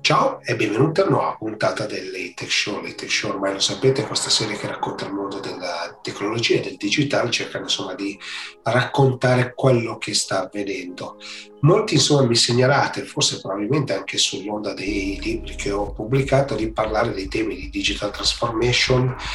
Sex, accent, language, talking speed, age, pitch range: male, native, Italian, 165 wpm, 30-49, 105-130 Hz